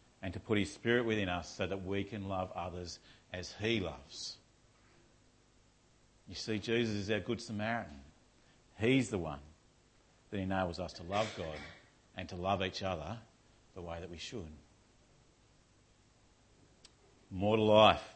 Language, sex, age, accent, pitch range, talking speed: English, male, 50-69, Australian, 95-120 Hz, 145 wpm